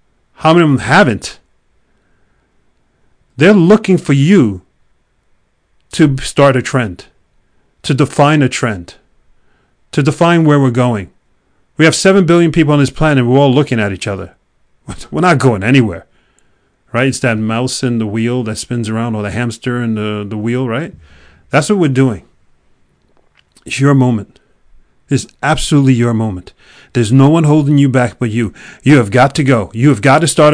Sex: male